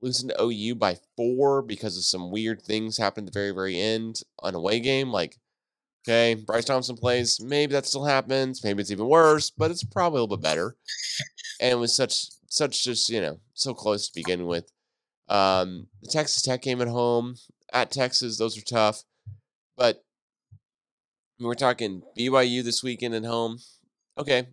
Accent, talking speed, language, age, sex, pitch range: American, 180 wpm, English, 30-49, male, 100-125 Hz